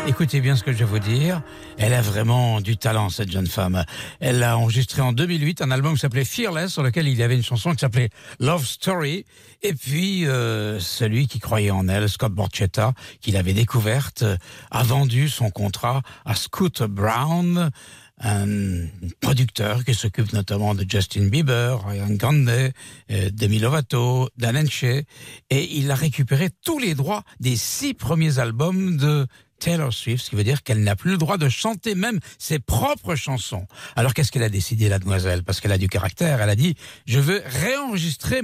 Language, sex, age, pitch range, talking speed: English, male, 60-79, 110-150 Hz, 185 wpm